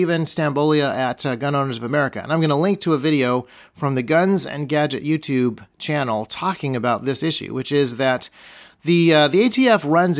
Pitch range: 120-155 Hz